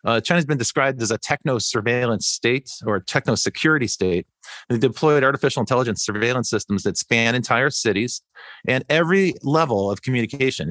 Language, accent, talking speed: English, American, 155 wpm